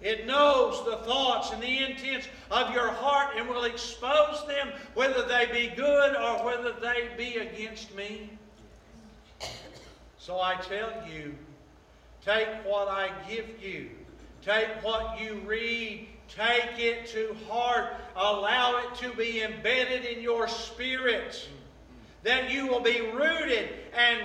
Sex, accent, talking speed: male, American, 135 wpm